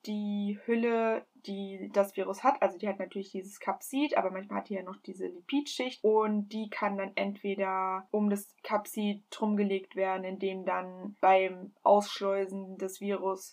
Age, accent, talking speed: 20-39, German, 160 wpm